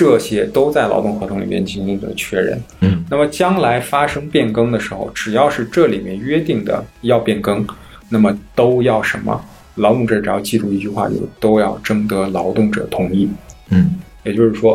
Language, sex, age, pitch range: Chinese, male, 20-39, 100-120 Hz